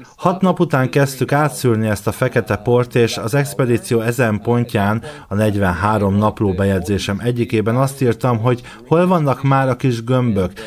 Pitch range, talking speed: 110-130 Hz, 155 wpm